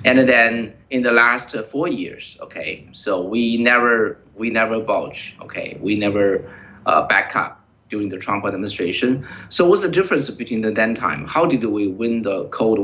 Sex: male